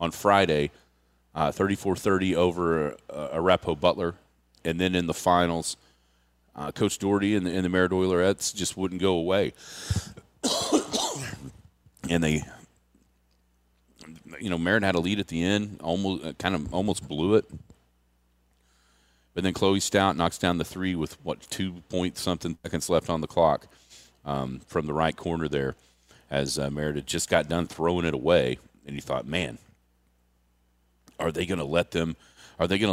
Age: 40-59